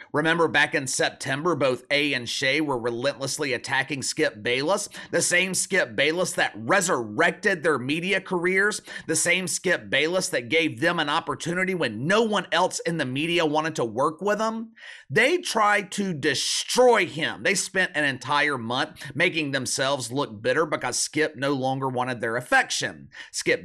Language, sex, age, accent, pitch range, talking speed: English, male, 30-49, American, 135-190 Hz, 165 wpm